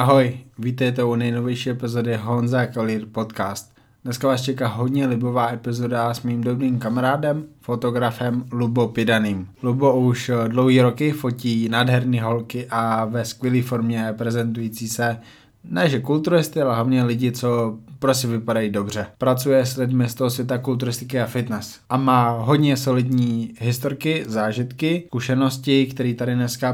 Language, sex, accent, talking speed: Czech, male, native, 140 wpm